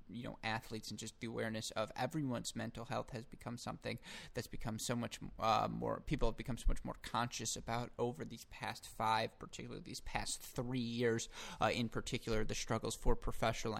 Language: English